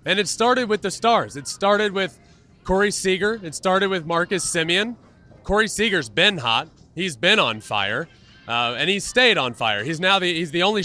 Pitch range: 135-195 Hz